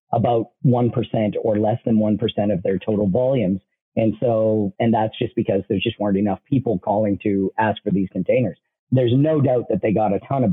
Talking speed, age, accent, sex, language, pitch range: 205 wpm, 40-59, American, male, English, 105-125 Hz